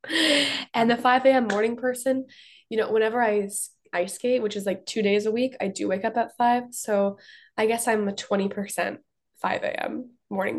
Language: English